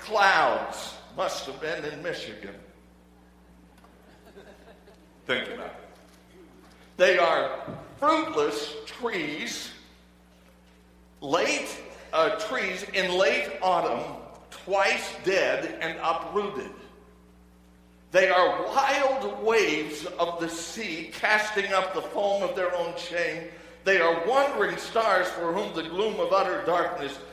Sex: male